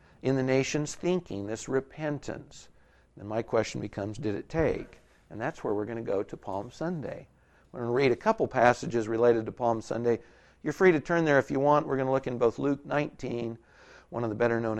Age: 50-69